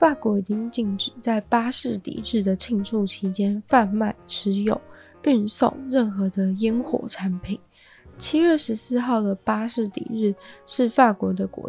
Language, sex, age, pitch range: Chinese, female, 20-39, 195-240 Hz